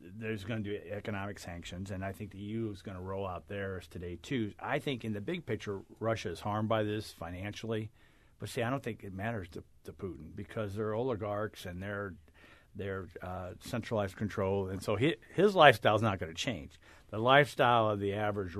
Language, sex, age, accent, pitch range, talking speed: English, male, 50-69, American, 95-110 Hz, 210 wpm